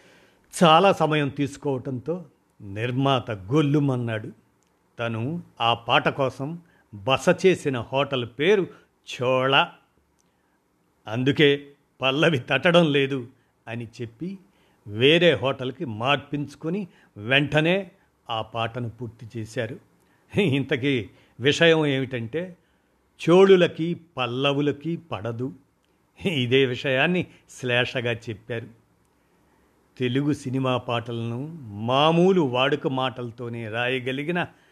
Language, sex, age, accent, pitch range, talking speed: Telugu, male, 50-69, native, 120-155 Hz, 80 wpm